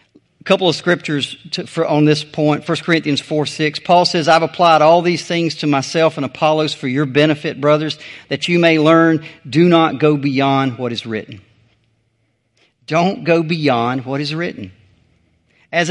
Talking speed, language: 175 wpm, English